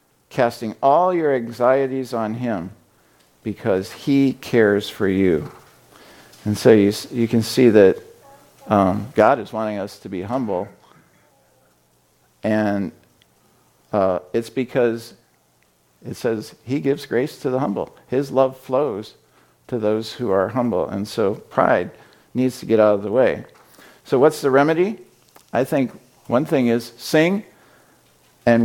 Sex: male